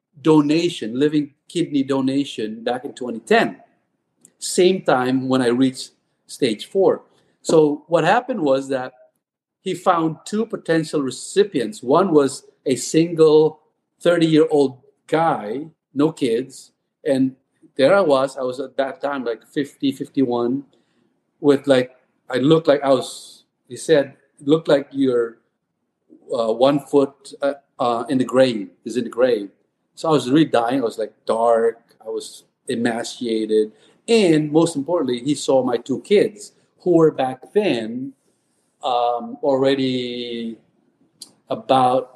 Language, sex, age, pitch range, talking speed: English, male, 50-69, 130-170 Hz, 140 wpm